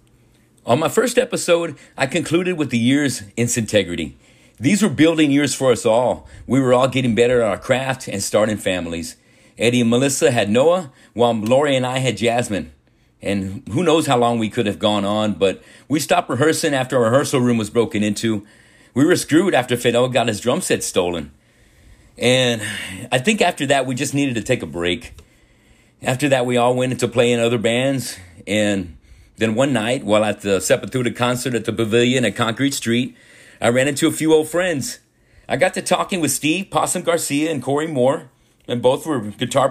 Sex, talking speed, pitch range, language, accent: male, 195 wpm, 115-145 Hz, English, American